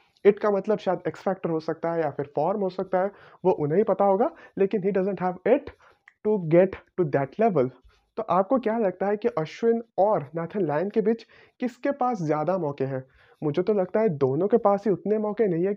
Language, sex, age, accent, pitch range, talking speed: Hindi, male, 30-49, native, 170-220 Hz, 220 wpm